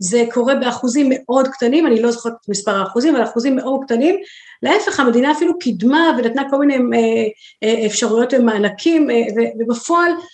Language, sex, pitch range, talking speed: Hebrew, female, 205-270 Hz, 145 wpm